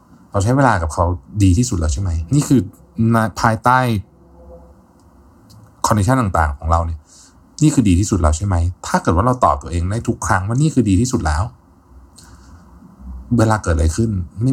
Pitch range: 80-110 Hz